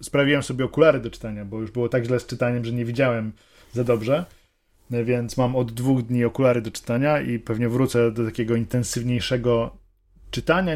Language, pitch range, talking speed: Polish, 115-130 Hz, 180 wpm